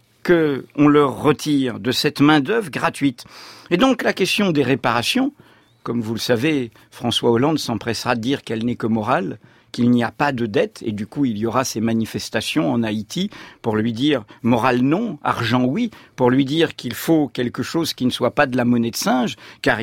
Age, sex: 50-69, male